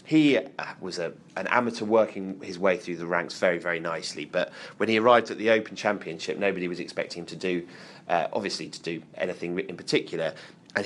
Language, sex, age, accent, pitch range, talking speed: English, male, 30-49, British, 90-105 Hz, 200 wpm